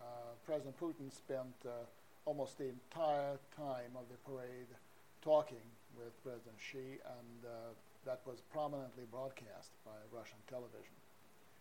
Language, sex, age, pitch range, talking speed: English, male, 50-69, 125-145 Hz, 130 wpm